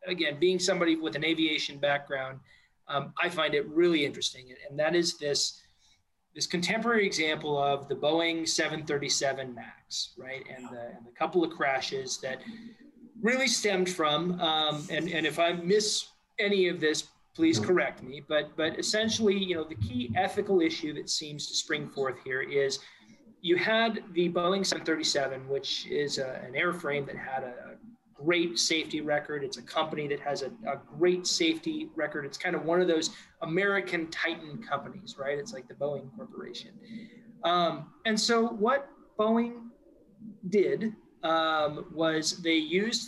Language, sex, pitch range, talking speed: English, male, 155-215 Hz, 165 wpm